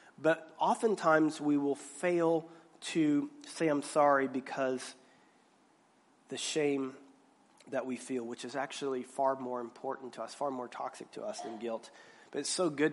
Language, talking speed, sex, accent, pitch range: English, 160 wpm, male, American, 135-165 Hz